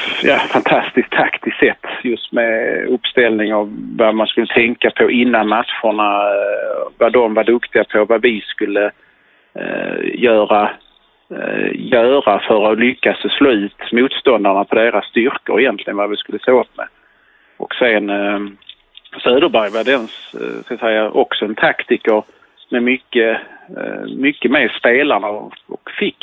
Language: English